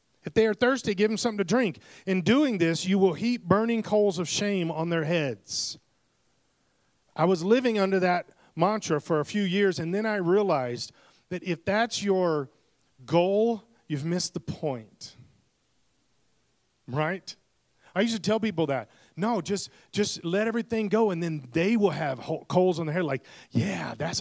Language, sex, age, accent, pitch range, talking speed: English, male, 40-59, American, 125-190 Hz, 175 wpm